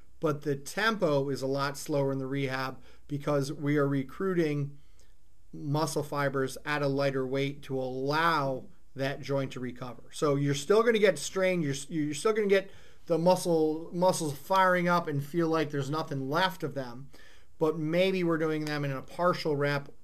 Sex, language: male, English